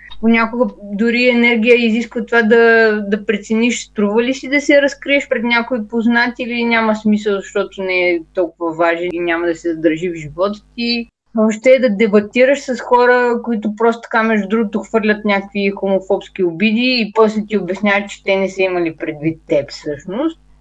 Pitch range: 195-240 Hz